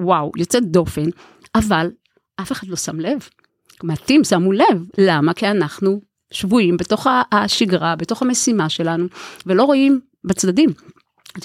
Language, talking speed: Hebrew, 130 wpm